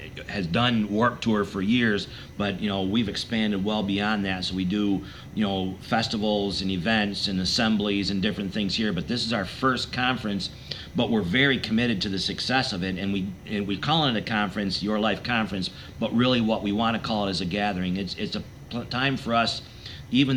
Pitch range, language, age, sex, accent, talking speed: 100-120 Hz, English, 50-69, male, American, 210 wpm